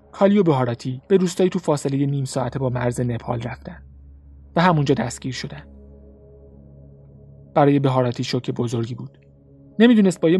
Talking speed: 140 wpm